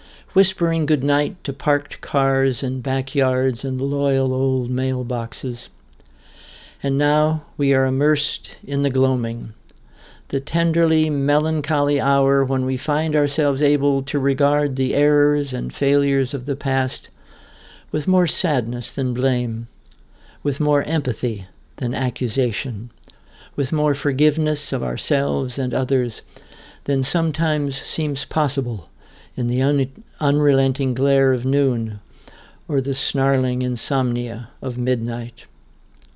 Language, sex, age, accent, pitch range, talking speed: English, male, 60-79, American, 130-145 Hz, 120 wpm